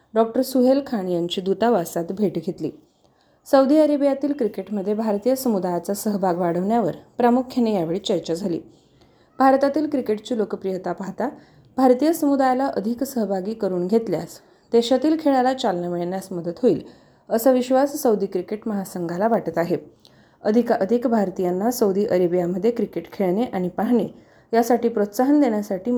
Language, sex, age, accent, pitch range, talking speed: Marathi, female, 30-49, native, 190-250 Hz, 120 wpm